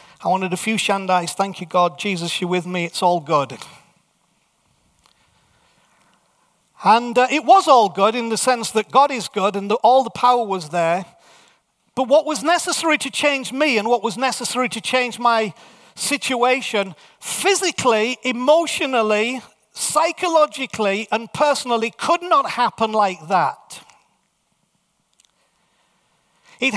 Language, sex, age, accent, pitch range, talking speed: English, male, 40-59, British, 190-265 Hz, 135 wpm